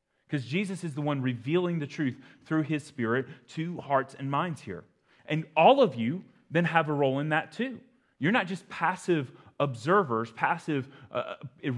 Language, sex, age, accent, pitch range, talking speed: English, male, 30-49, American, 120-170 Hz, 175 wpm